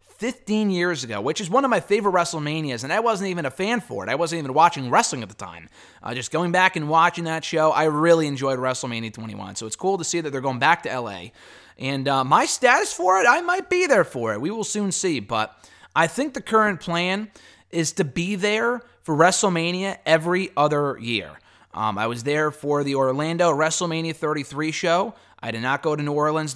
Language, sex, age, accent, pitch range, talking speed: English, male, 20-39, American, 120-170 Hz, 220 wpm